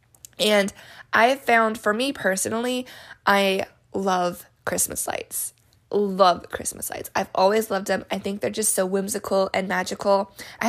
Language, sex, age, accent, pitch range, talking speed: English, female, 20-39, American, 180-210 Hz, 150 wpm